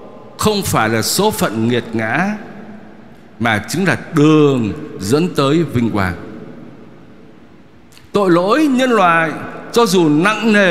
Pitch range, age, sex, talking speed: 135-215 Hz, 60-79, male, 130 wpm